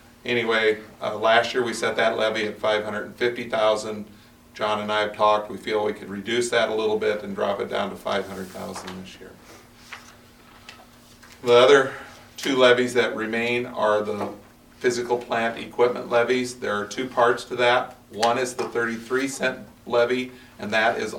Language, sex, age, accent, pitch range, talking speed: English, male, 50-69, American, 110-120 Hz, 165 wpm